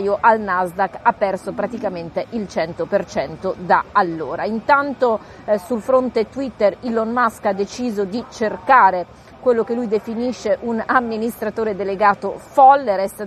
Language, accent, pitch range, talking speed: Italian, native, 200-240 Hz, 130 wpm